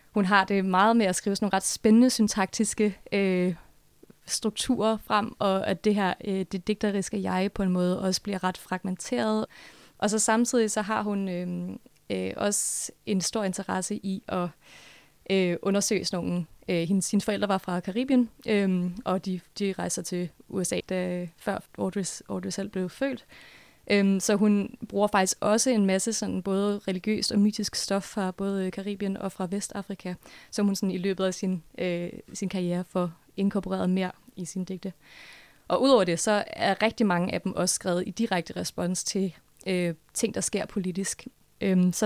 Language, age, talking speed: Danish, 20-39, 170 wpm